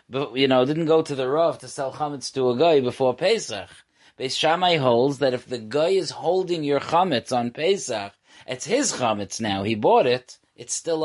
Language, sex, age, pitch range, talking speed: English, male, 30-49, 120-165 Hz, 205 wpm